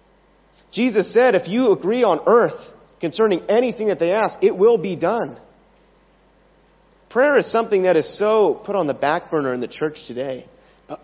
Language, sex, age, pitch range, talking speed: English, male, 30-49, 155-230 Hz, 175 wpm